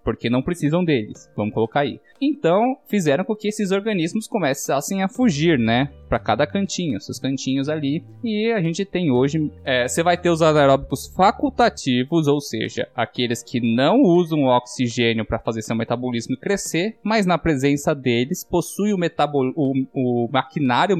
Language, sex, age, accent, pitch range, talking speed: Portuguese, male, 20-39, Brazilian, 125-185 Hz, 155 wpm